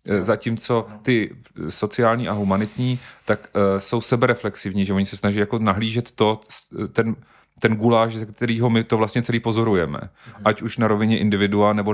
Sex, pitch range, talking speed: male, 100-115 Hz, 160 wpm